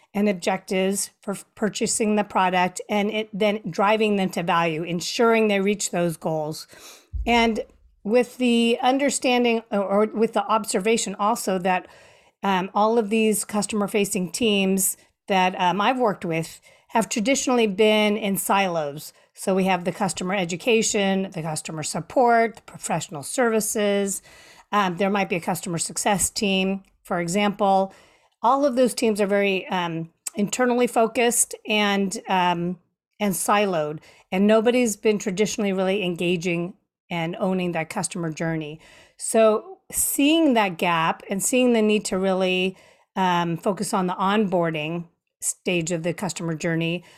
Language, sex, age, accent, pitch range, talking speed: English, female, 40-59, American, 180-220 Hz, 140 wpm